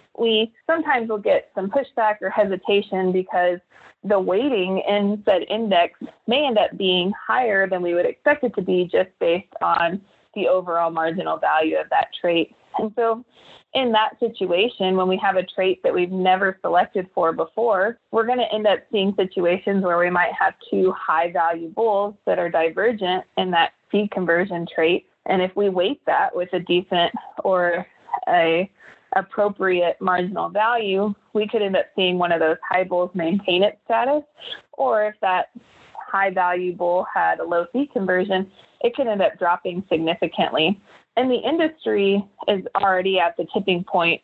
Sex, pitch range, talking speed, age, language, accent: female, 175-210 Hz, 170 wpm, 20-39, English, American